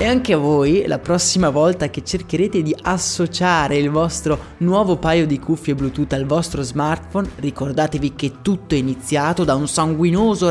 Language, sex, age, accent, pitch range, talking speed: Italian, male, 20-39, native, 145-190 Hz, 165 wpm